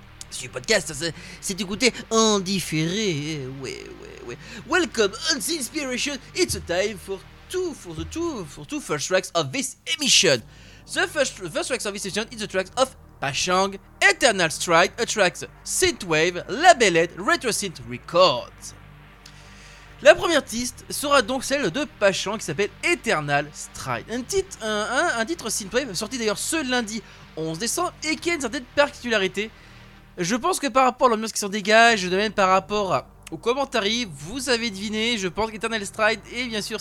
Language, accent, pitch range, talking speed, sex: French, French, 170-235 Hz, 175 wpm, male